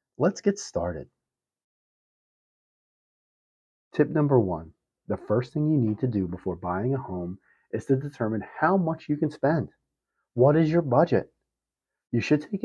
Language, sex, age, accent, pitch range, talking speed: English, male, 40-59, American, 95-135 Hz, 150 wpm